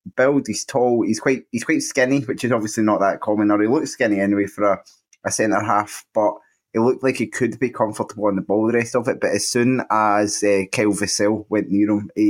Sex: male